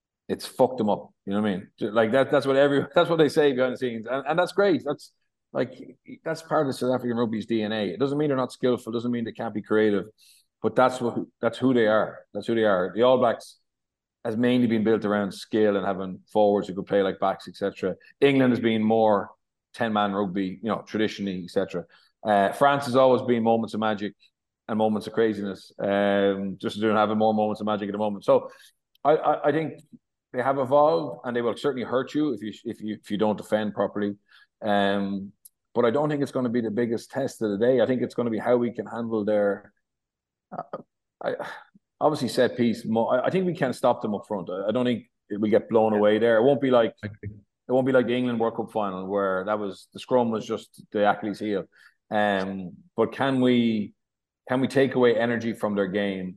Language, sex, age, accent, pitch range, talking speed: English, male, 30-49, Irish, 105-125 Hz, 230 wpm